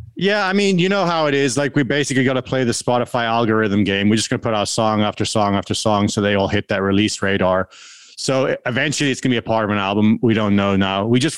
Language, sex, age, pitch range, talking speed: English, male, 30-49, 110-140 Hz, 280 wpm